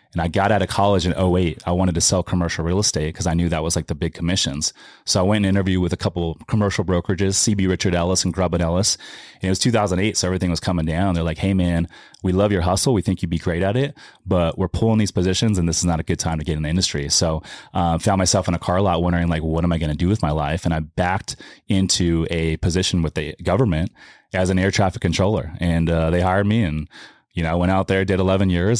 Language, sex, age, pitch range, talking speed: English, male, 30-49, 85-95 Hz, 270 wpm